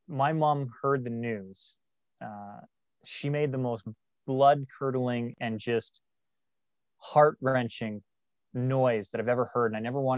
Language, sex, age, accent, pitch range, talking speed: English, male, 20-39, American, 120-170 Hz, 145 wpm